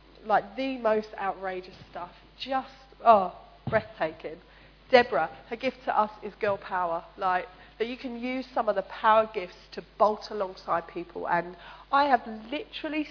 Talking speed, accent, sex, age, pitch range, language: 155 wpm, British, female, 30-49, 175-225 Hz, English